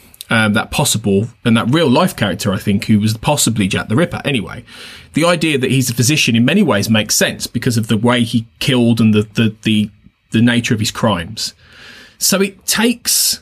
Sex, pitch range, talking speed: male, 110-150 Hz, 205 wpm